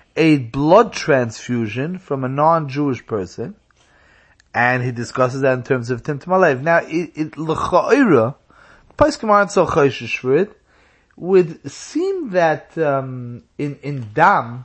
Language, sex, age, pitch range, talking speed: English, male, 30-49, 135-180 Hz, 120 wpm